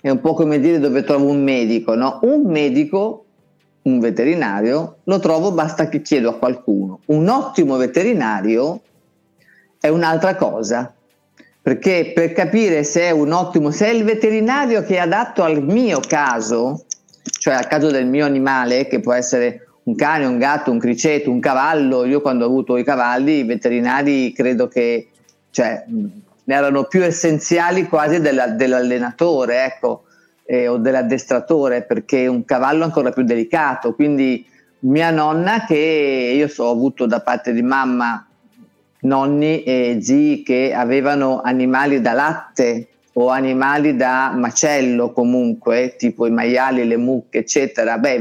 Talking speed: 150 wpm